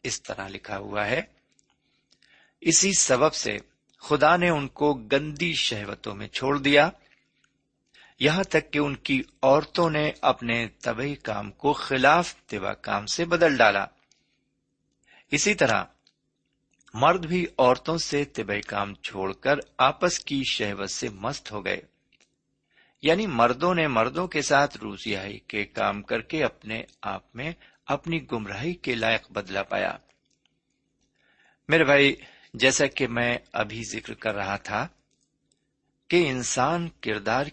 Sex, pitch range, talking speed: male, 110-160 Hz, 90 wpm